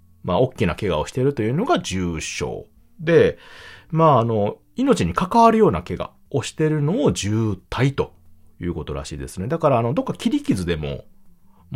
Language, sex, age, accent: Japanese, male, 40-59, native